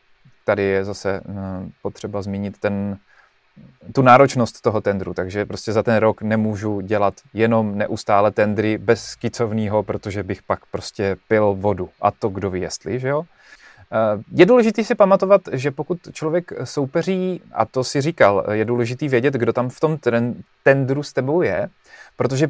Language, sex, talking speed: Czech, male, 155 wpm